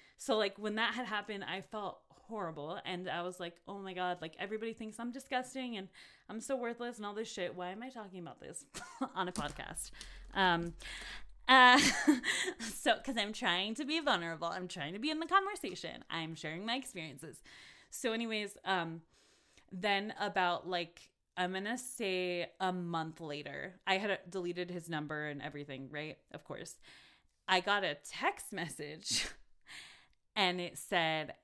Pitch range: 175-220 Hz